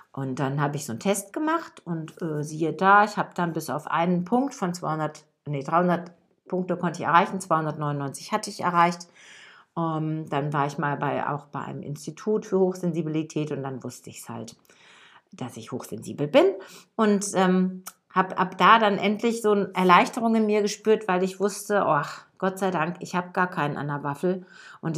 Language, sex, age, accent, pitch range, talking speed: German, female, 50-69, German, 160-205 Hz, 195 wpm